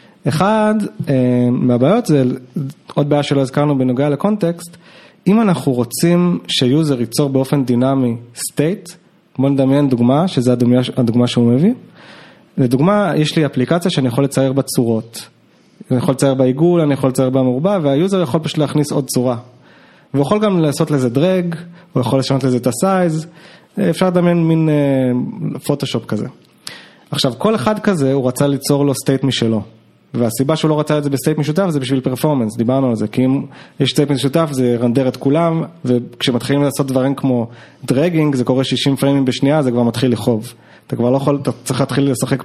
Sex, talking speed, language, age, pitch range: male, 170 wpm, Hebrew, 20-39, 125-165 Hz